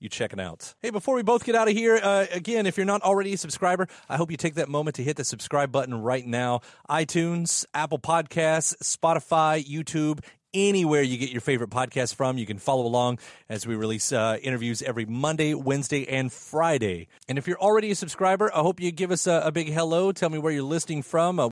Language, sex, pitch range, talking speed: English, male, 130-180 Hz, 225 wpm